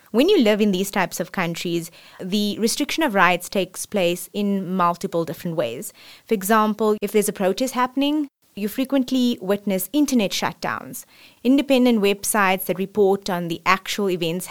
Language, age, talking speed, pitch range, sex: English, 20-39, 155 wpm, 180-230 Hz, female